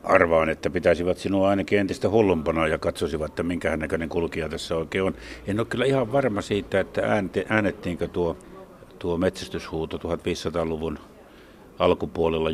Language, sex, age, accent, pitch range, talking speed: Finnish, male, 60-79, native, 80-105 Hz, 140 wpm